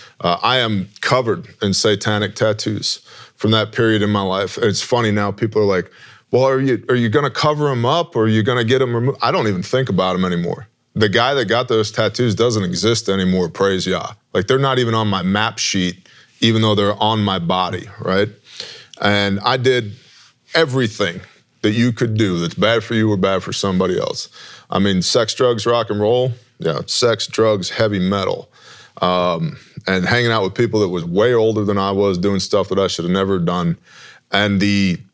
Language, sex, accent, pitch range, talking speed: English, male, American, 100-120 Hz, 210 wpm